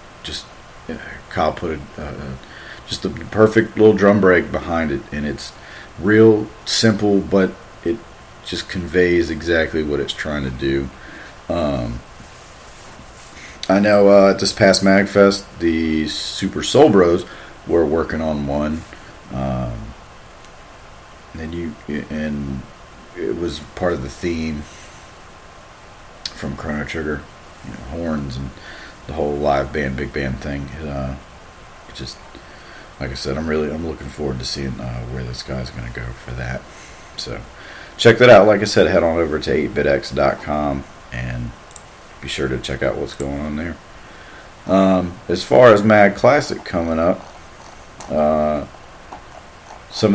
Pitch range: 70-95 Hz